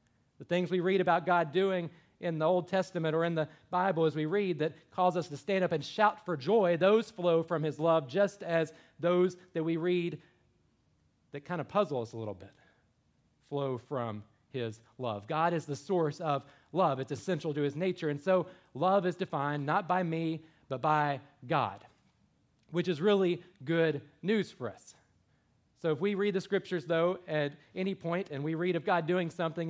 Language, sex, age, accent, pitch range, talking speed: English, male, 40-59, American, 135-175 Hz, 195 wpm